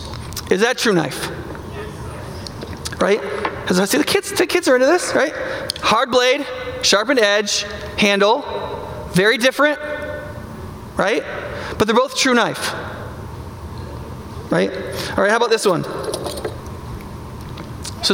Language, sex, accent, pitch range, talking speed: English, male, American, 225-305 Hz, 120 wpm